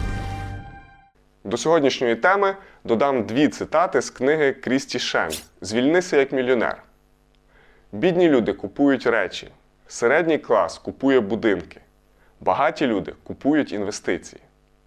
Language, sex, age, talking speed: Ukrainian, male, 20-39, 100 wpm